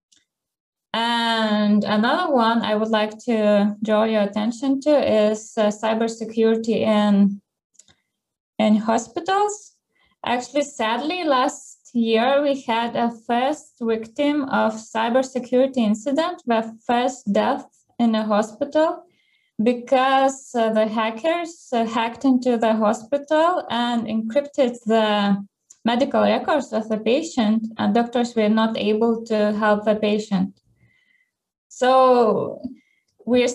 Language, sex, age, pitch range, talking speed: English, female, 20-39, 215-260 Hz, 105 wpm